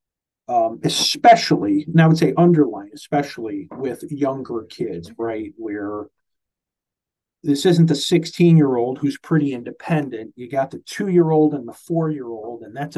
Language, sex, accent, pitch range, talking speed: English, male, American, 120-160 Hz, 135 wpm